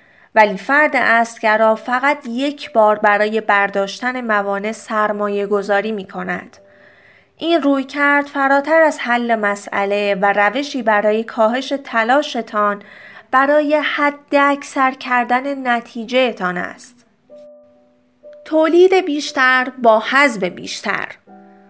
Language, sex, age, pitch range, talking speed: Persian, female, 30-49, 210-295 Hz, 95 wpm